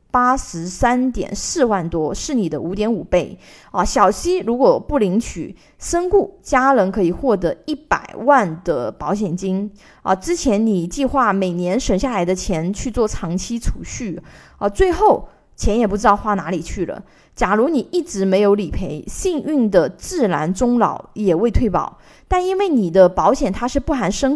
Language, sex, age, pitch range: Chinese, female, 20-39, 190-260 Hz